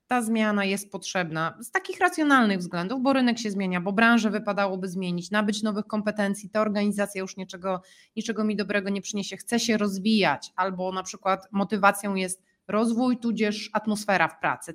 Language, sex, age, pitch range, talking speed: Polish, female, 30-49, 180-215 Hz, 165 wpm